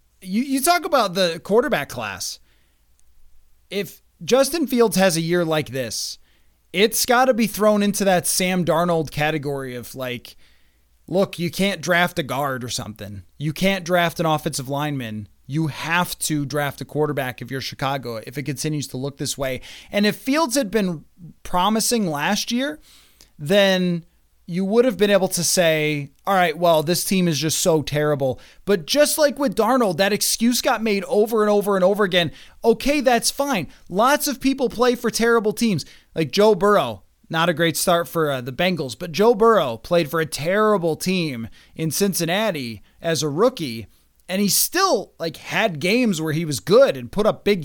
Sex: male